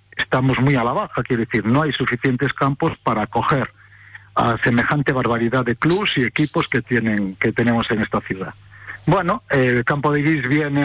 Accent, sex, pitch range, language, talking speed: Spanish, male, 115-140 Hz, Spanish, 185 wpm